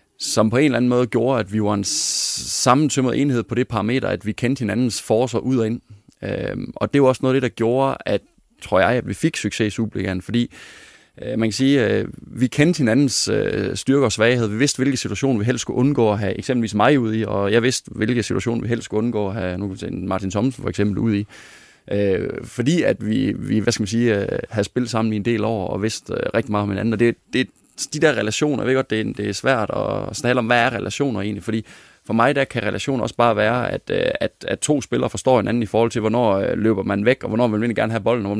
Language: Danish